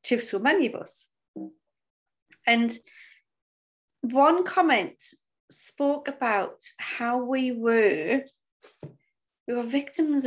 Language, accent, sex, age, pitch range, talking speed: English, British, female, 40-59, 220-275 Hz, 95 wpm